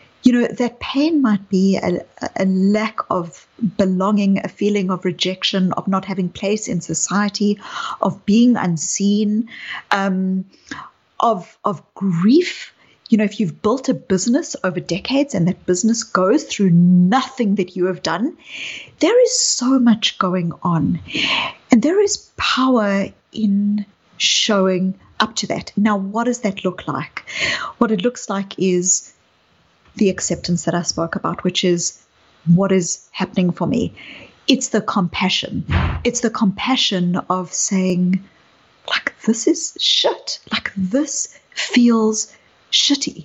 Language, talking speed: English, 140 wpm